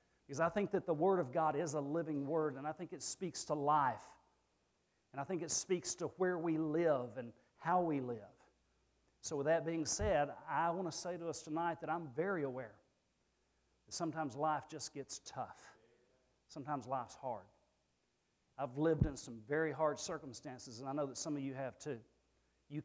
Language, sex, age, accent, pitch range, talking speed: English, male, 50-69, American, 135-175 Hz, 195 wpm